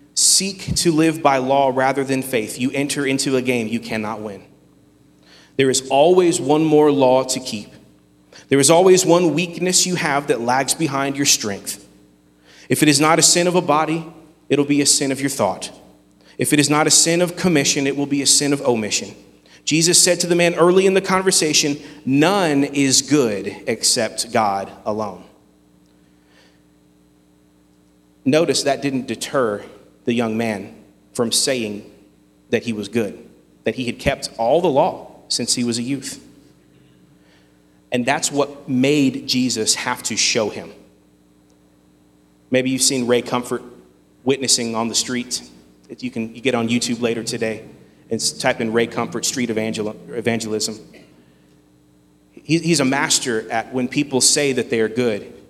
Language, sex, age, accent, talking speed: English, male, 30-49, American, 165 wpm